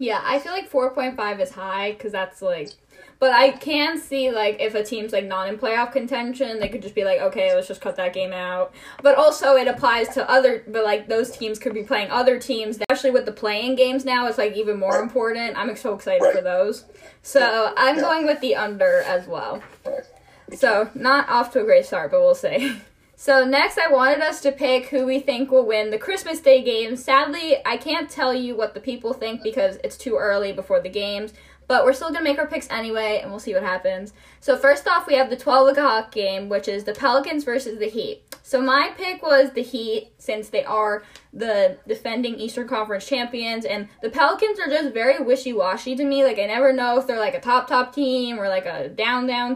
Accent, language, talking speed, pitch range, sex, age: American, English, 220 wpm, 215-275 Hz, female, 10-29